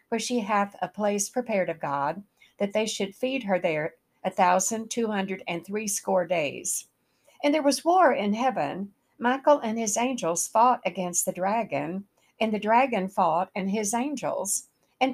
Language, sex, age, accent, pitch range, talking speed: English, female, 60-79, American, 185-245 Hz, 170 wpm